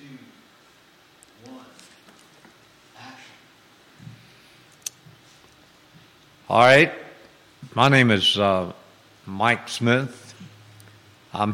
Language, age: English, 60-79